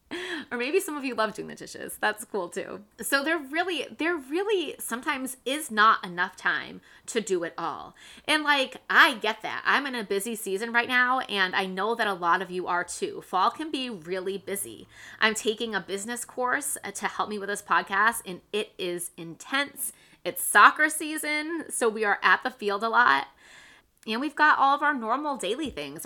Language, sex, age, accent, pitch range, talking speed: English, female, 20-39, American, 195-270 Hz, 200 wpm